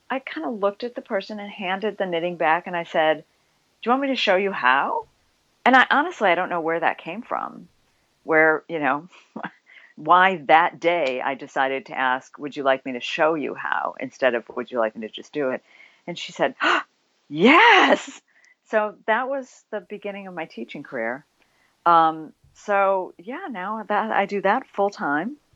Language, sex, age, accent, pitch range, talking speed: English, female, 40-59, American, 145-215 Hz, 195 wpm